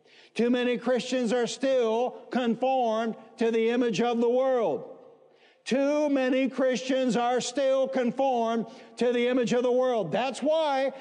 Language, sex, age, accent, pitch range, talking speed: English, male, 60-79, American, 235-260 Hz, 140 wpm